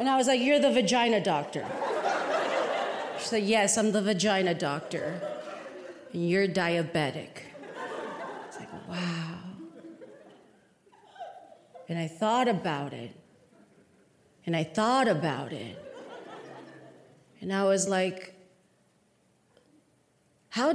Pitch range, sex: 225-320 Hz, female